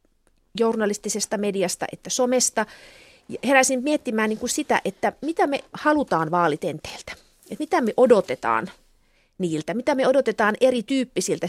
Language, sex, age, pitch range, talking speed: Finnish, female, 30-49, 185-235 Hz, 115 wpm